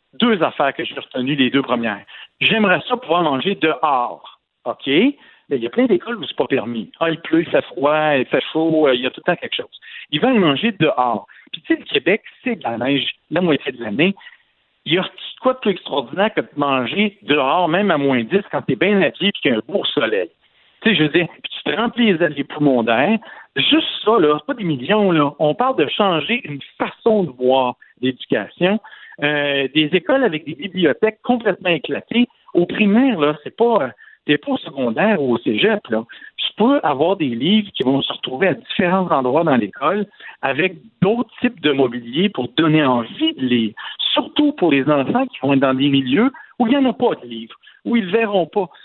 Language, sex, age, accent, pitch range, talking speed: French, male, 60-79, French, 145-235 Hz, 225 wpm